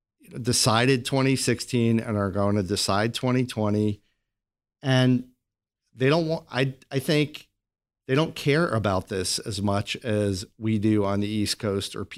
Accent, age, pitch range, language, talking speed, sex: American, 40-59, 110-135 Hz, English, 150 wpm, male